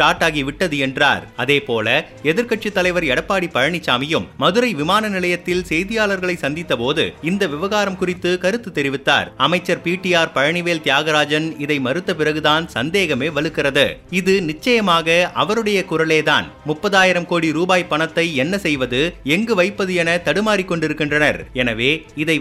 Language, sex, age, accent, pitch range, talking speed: Tamil, male, 30-49, native, 150-185 Hz, 120 wpm